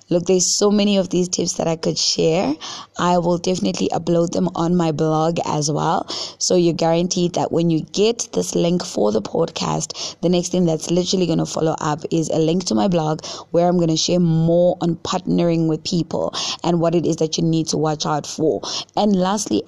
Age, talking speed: 20-39, 215 wpm